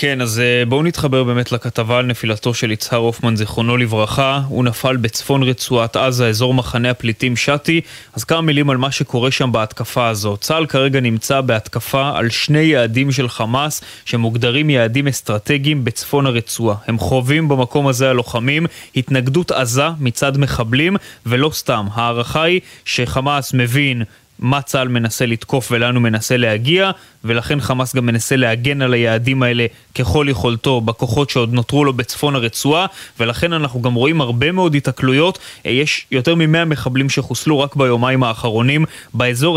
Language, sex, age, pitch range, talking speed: Hebrew, male, 20-39, 120-150 Hz, 150 wpm